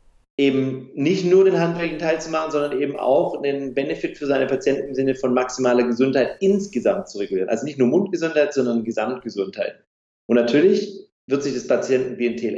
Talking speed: 170 wpm